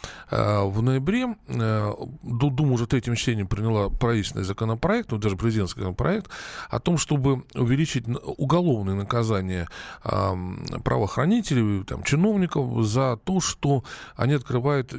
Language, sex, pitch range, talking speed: Russian, male, 105-150 Hz, 110 wpm